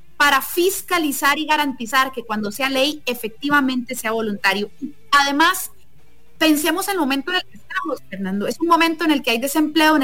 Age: 30-49